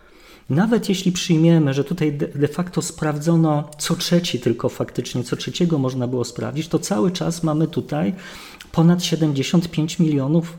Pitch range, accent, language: 130-165 Hz, native, Polish